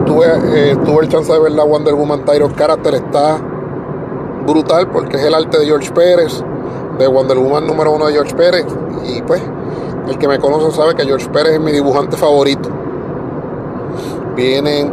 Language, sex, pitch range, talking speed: Spanish, male, 140-155 Hz, 175 wpm